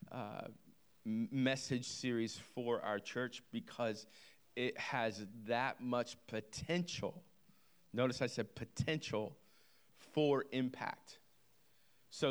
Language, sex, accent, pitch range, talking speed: English, male, American, 120-140 Hz, 95 wpm